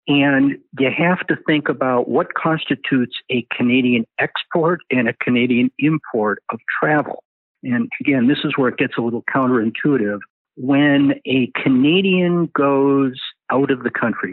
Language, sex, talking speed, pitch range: English, male, 145 wpm, 115-145 Hz